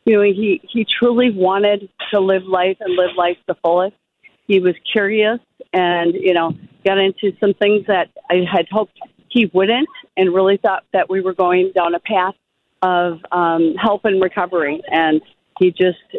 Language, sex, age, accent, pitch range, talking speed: English, female, 50-69, American, 170-195 Hz, 180 wpm